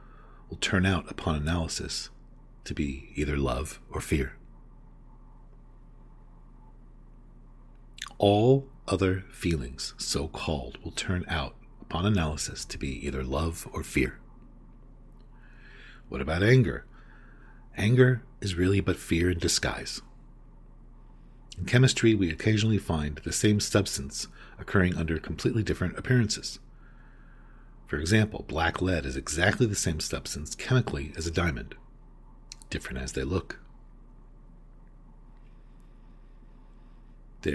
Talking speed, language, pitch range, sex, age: 105 wpm, English, 75-105 Hz, male, 40-59